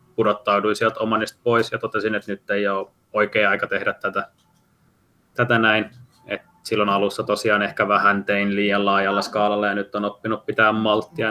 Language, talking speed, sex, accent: Finnish, 170 wpm, male, native